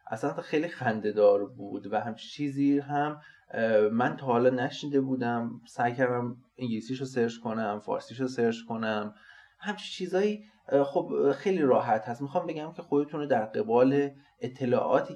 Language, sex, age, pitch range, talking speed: Persian, male, 30-49, 110-140 Hz, 145 wpm